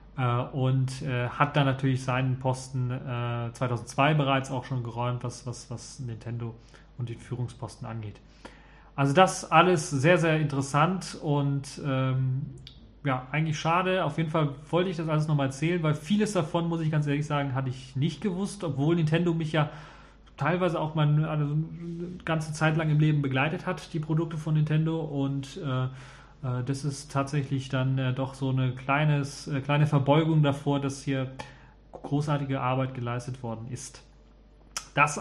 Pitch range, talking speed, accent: 130-155 Hz, 155 wpm, German